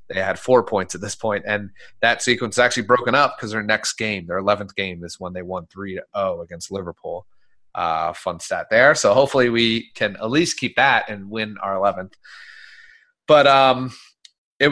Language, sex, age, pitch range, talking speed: English, male, 30-49, 100-125 Hz, 200 wpm